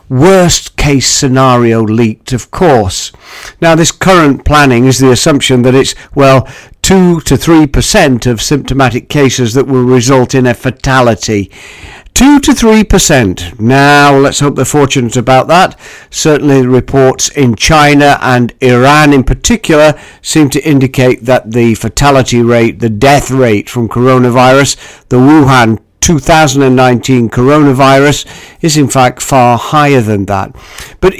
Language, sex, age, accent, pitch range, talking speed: English, male, 50-69, British, 125-150 Hz, 140 wpm